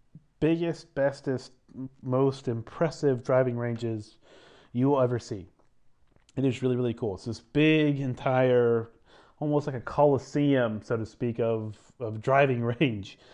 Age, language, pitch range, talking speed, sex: 30-49, English, 115-135 Hz, 135 wpm, male